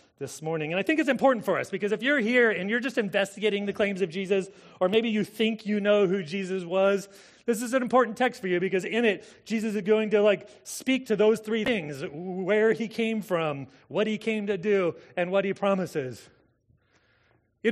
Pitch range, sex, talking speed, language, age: 130-200 Hz, male, 215 wpm, English, 30-49